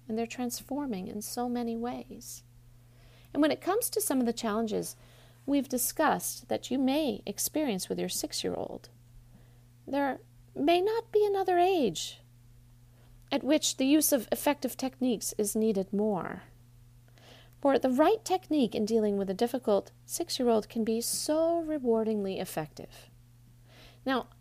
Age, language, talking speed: 40-59, English, 140 wpm